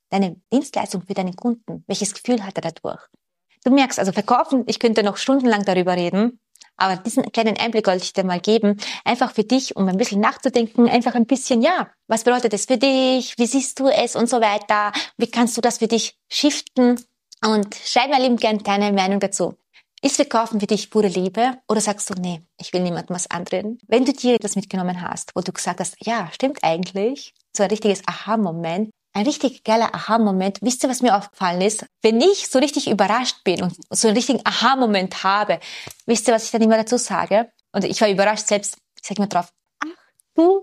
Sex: female